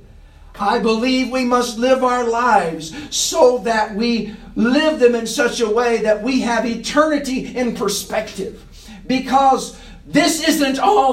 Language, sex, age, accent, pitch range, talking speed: English, male, 50-69, American, 190-255 Hz, 140 wpm